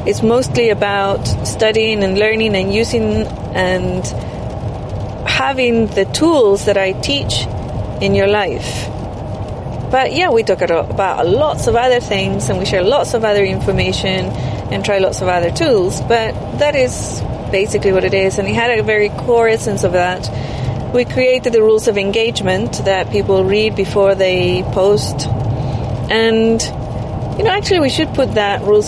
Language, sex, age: English, female, 30-49